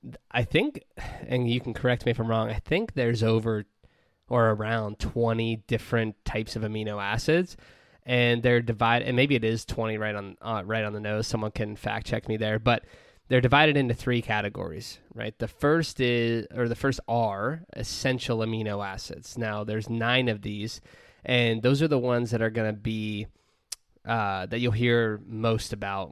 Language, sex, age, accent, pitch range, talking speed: English, male, 20-39, American, 105-125 Hz, 185 wpm